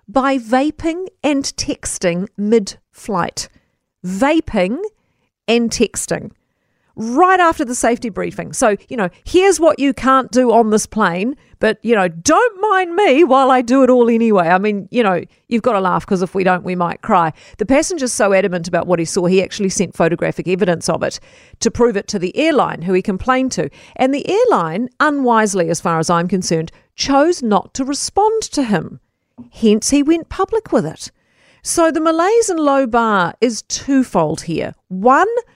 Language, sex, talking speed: English, female, 180 wpm